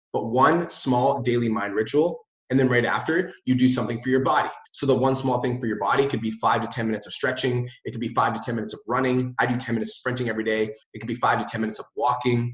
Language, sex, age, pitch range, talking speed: English, male, 30-49, 115-140 Hz, 280 wpm